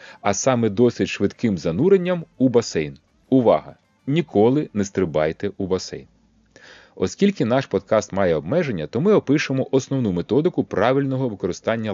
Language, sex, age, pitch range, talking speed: Ukrainian, male, 30-49, 100-155 Hz, 125 wpm